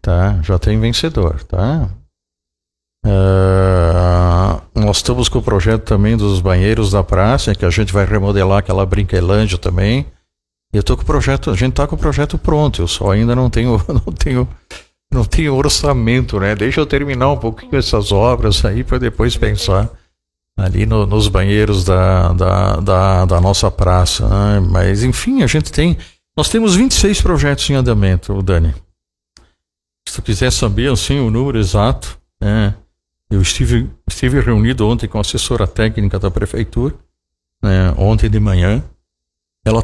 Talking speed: 160 wpm